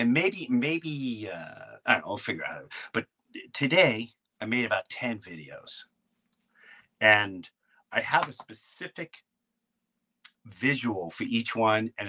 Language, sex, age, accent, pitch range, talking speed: English, male, 40-59, American, 110-150 Hz, 140 wpm